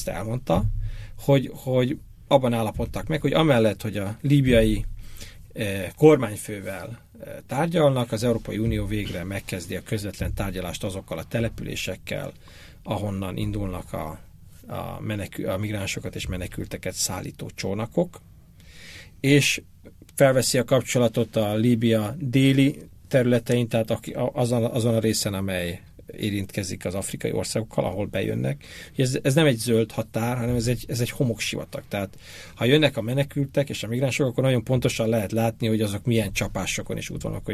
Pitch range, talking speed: 105-130 Hz, 135 wpm